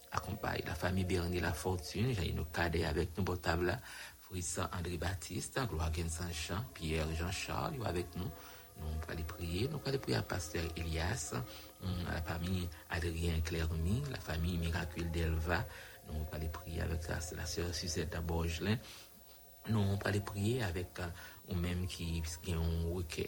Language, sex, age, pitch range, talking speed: English, male, 60-79, 85-95 Hz, 175 wpm